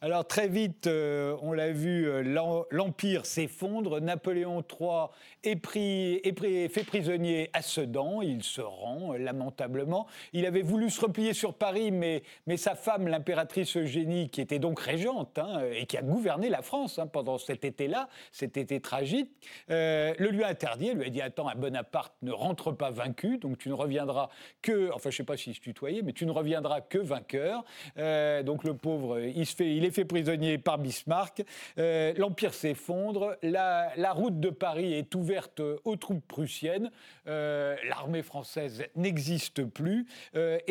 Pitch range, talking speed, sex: 150-200 Hz, 185 wpm, male